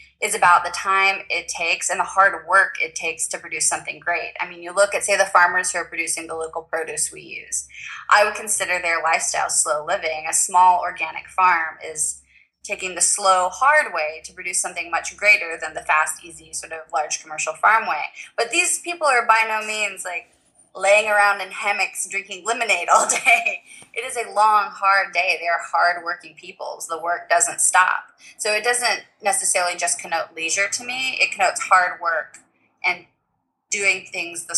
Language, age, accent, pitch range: English, 20-39, American, 165-205 Hz